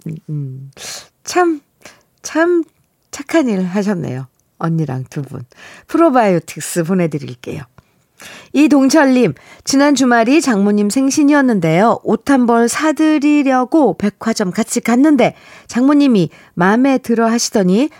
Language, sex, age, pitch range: Korean, female, 40-59, 160-240 Hz